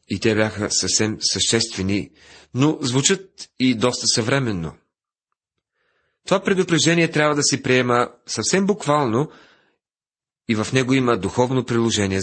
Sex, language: male, Bulgarian